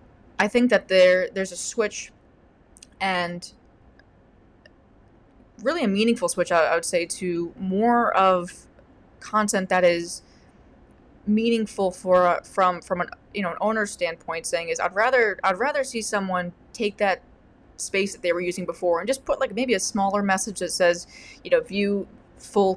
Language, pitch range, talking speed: English, 180-215 Hz, 165 wpm